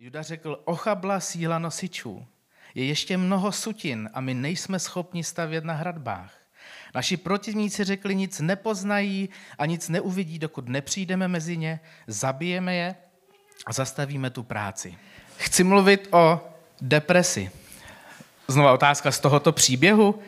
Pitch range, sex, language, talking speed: 140-190 Hz, male, Czech, 125 wpm